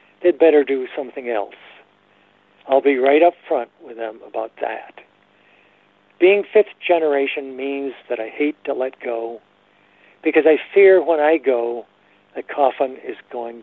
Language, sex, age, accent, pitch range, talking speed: English, male, 60-79, American, 100-150 Hz, 150 wpm